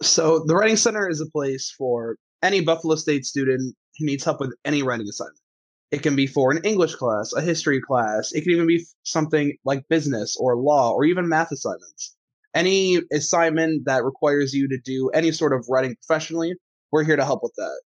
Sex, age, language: male, 20-39, English